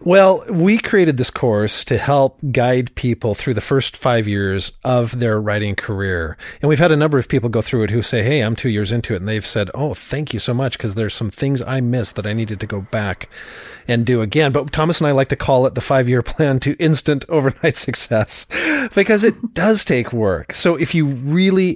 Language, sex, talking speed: English, male, 230 wpm